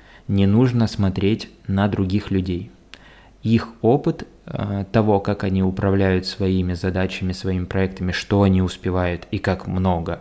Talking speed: 130 wpm